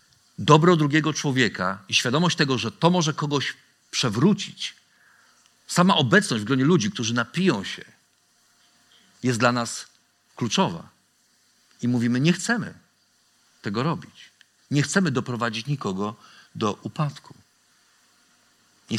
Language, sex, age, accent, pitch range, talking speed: Polish, male, 50-69, native, 125-170 Hz, 115 wpm